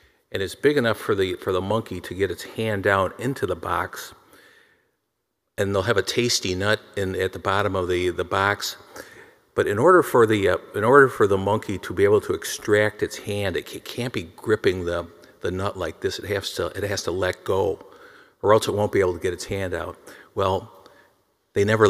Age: 50-69